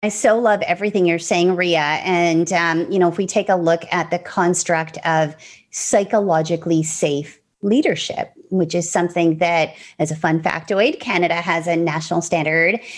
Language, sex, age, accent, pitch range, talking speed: English, female, 30-49, American, 160-190 Hz, 165 wpm